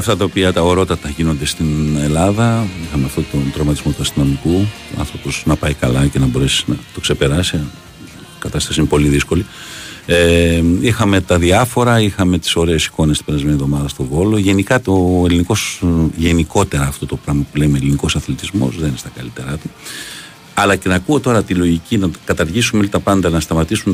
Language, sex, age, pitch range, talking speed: Greek, male, 50-69, 80-100 Hz, 180 wpm